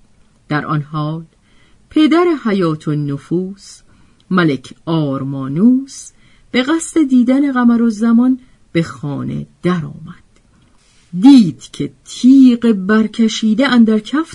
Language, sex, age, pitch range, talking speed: Persian, female, 50-69, 160-260 Hz, 100 wpm